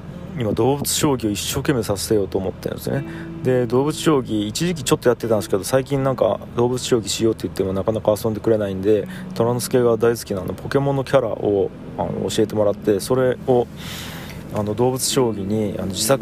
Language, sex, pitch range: Japanese, male, 105-135 Hz